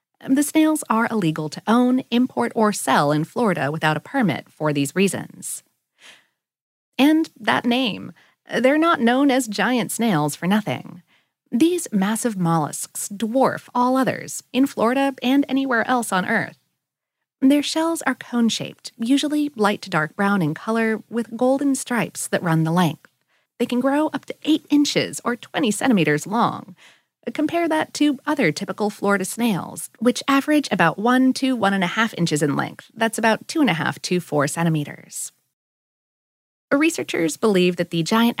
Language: English